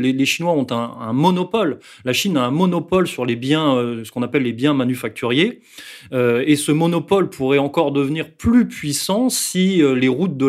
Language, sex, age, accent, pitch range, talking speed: French, male, 30-49, French, 120-160 Hz, 190 wpm